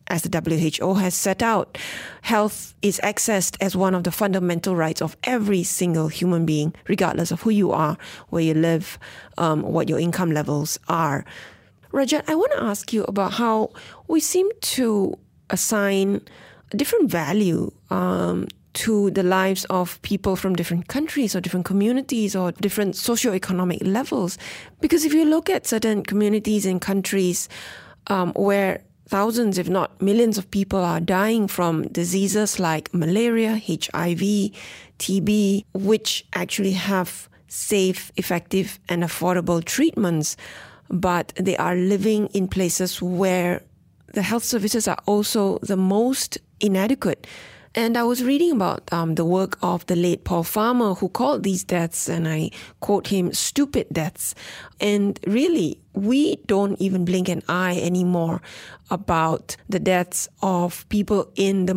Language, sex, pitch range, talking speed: English, female, 180-210 Hz, 150 wpm